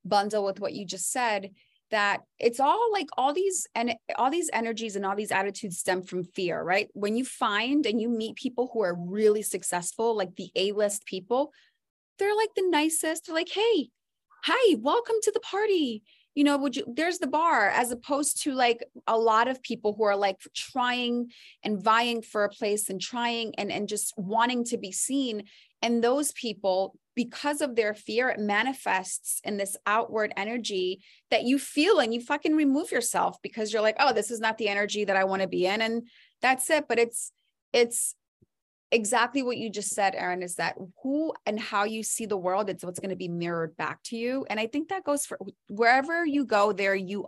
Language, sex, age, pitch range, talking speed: English, female, 20-39, 200-280 Hz, 205 wpm